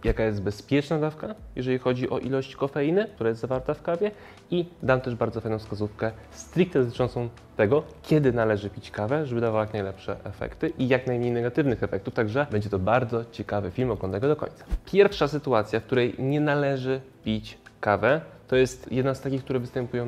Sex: male